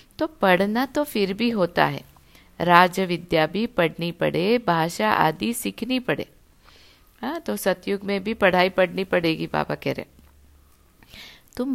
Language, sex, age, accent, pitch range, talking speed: Hindi, female, 60-79, native, 165-225 Hz, 140 wpm